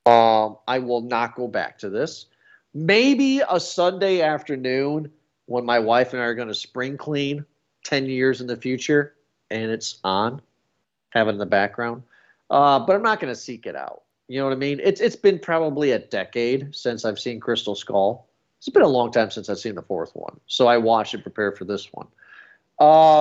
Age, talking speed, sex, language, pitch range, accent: 40-59, 205 wpm, male, English, 115-145 Hz, American